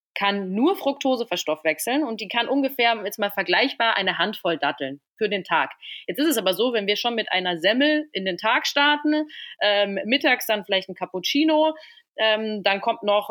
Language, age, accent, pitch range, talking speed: German, 30-49, German, 195-260 Hz, 190 wpm